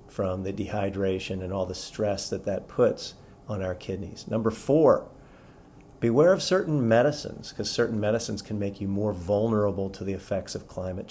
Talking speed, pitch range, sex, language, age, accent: 175 wpm, 100-110 Hz, male, English, 40-59, American